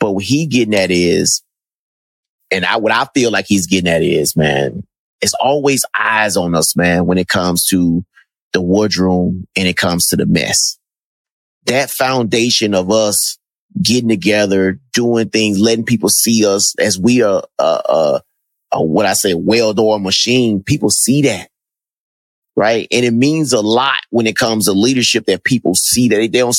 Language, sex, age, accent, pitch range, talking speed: English, male, 30-49, American, 100-125 Hz, 180 wpm